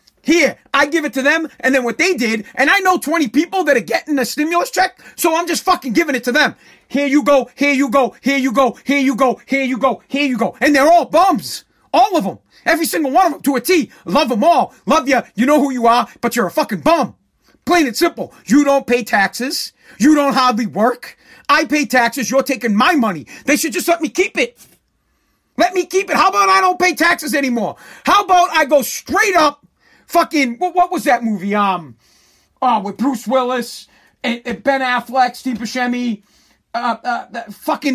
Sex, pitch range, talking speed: male, 235-310 Hz, 220 wpm